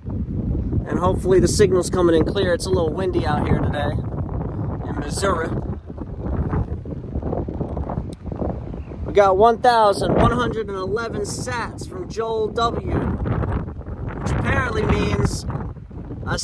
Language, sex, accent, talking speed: English, male, American, 95 wpm